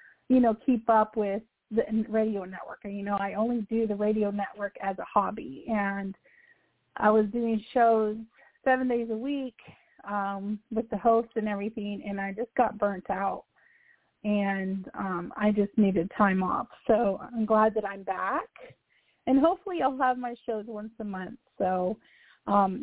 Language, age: English, 30-49